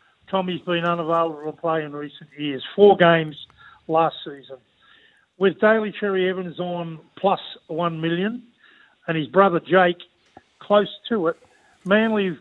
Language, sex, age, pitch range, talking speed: English, male, 50-69, 170-195 Hz, 135 wpm